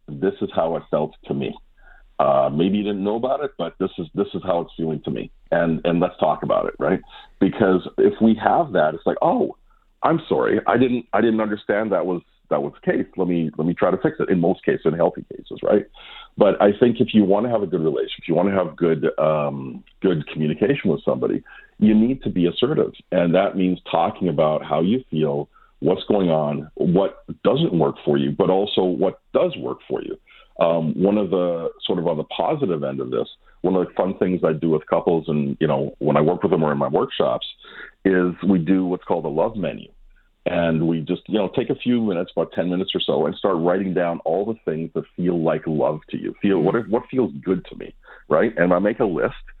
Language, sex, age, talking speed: English, male, 50-69, 240 wpm